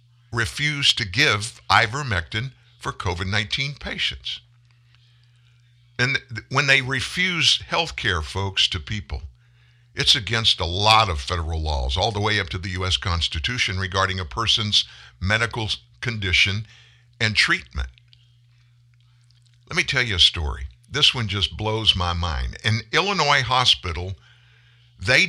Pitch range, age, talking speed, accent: 100-125 Hz, 50-69, 130 wpm, American